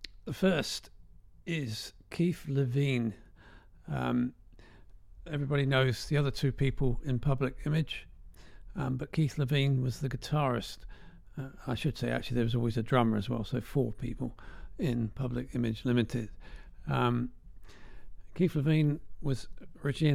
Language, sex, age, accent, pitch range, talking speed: English, male, 40-59, British, 110-135 Hz, 135 wpm